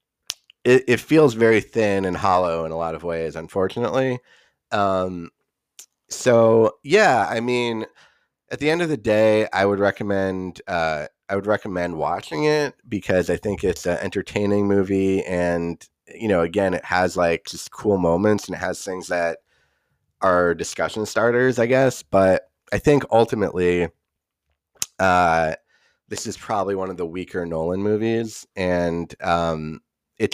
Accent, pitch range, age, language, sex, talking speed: American, 85-105 Hz, 30-49, English, male, 150 wpm